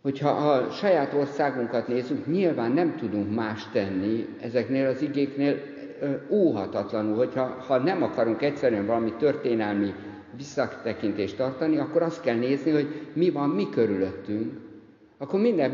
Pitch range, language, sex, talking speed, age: 115-165 Hz, Hungarian, male, 135 wpm, 50-69